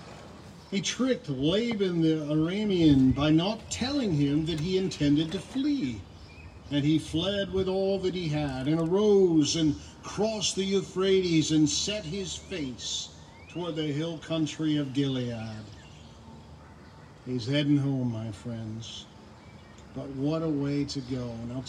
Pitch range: 125-180 Hz